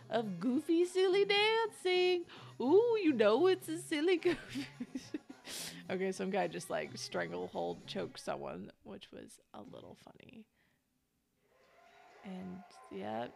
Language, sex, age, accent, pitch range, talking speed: English, female, 20-39, American, 185-300 Hz, 115 wpm